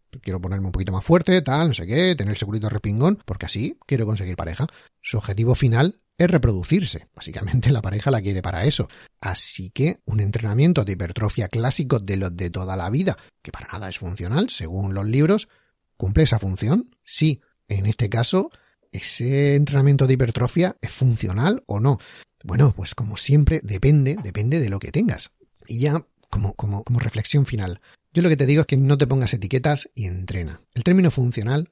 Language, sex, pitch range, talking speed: Spanish, male, 105-145 Hz, 190 wpm